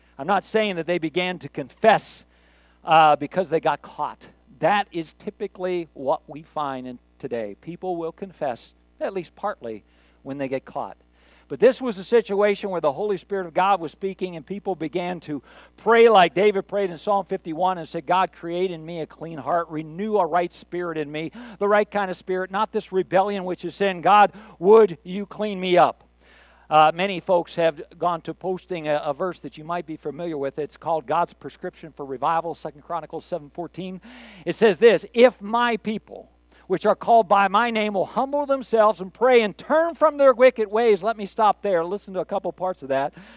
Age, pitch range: 50-69, 160-205 Hz